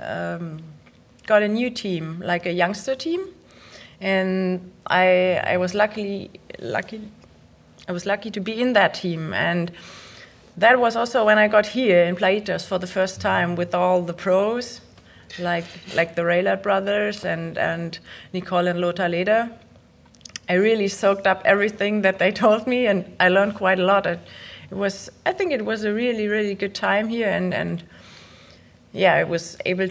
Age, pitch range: 30-49, 175-210 Hz